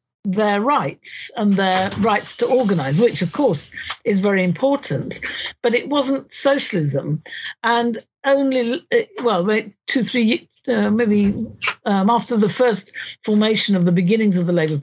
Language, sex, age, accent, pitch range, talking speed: English, female, 50-69, British, 180-230 Hz, 140 wpm